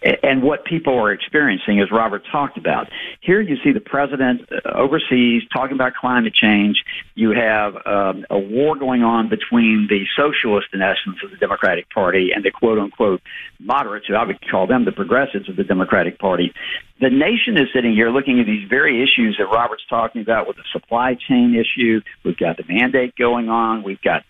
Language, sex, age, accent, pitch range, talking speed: English, male, 50-69, American, 115-155 Hz, 195 wpm